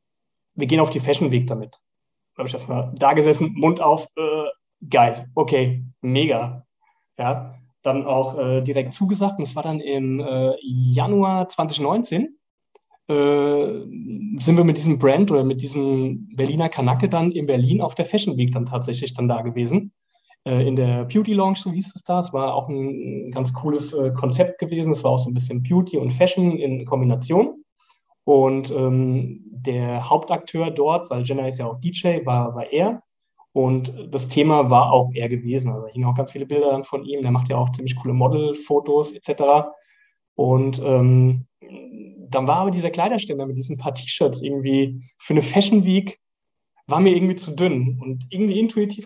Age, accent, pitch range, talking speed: 30-49, German, 130-170 Hz, 180 wpm